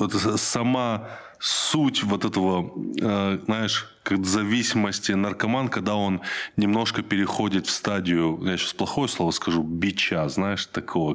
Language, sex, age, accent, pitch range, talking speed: Russian, male, 20-39, native, 85-105 Hz, 120 wpm